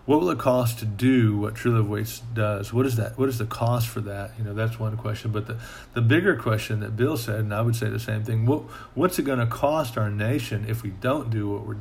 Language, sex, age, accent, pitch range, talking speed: English, male, 40-59, American, 105-115 Hz, 275 wpm